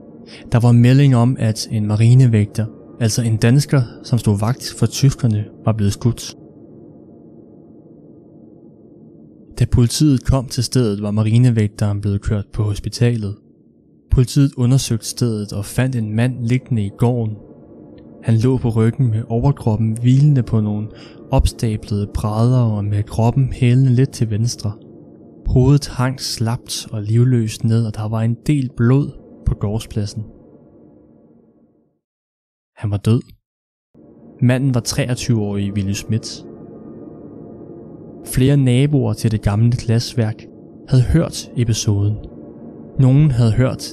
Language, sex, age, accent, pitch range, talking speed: Danish, male, 20-39, native, 105-125 Hz, 125 wpm